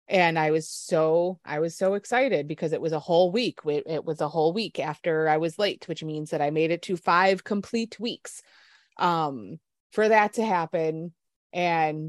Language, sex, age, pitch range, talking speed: English, female, 20-39, 155-190 Hz, 195 wpm